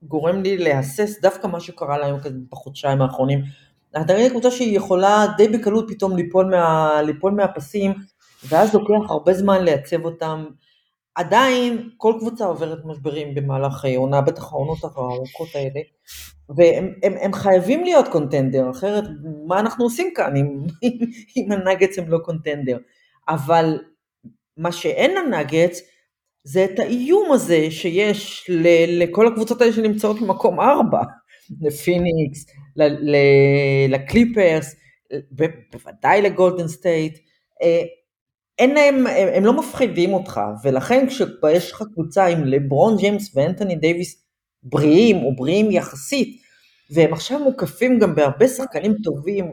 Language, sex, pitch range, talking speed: Hebrew, female, 150-205 Hz, 125 wpm